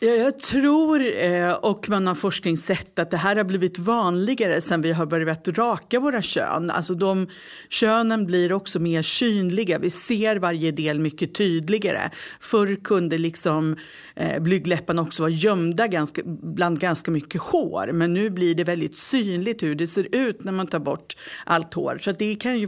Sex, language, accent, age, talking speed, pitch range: female, English, Swedish, 50-69, 170 wpm, 170-215 Hz